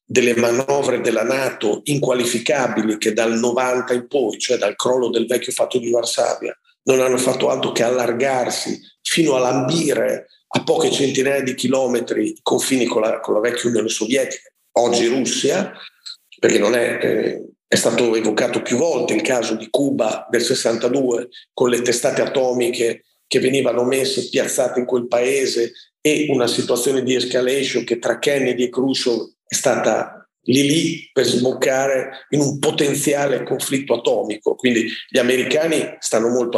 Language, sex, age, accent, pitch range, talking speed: Italian, male, 40-59, native, 125-150 Hz, 155 wpm